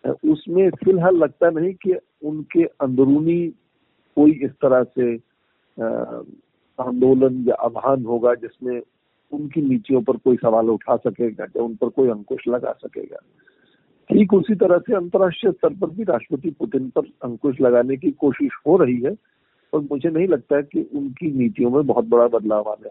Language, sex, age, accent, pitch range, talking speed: Hindi, male, 50-69, native, 120-180 Hz, 150 wpm